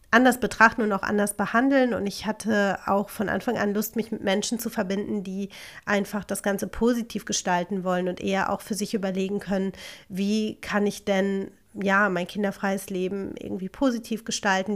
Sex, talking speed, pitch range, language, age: female, 180 wpm, 195-220 Hz, German, 30-49